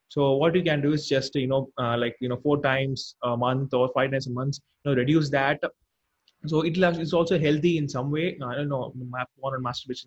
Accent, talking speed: Indian, 220 wpm